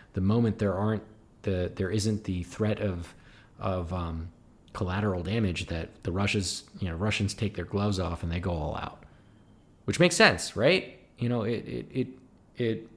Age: 20-39